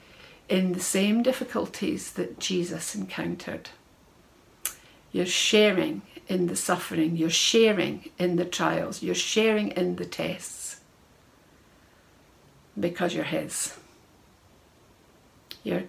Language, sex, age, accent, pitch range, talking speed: English, female, 60-79, British, 170-190 Hz, 100 wpm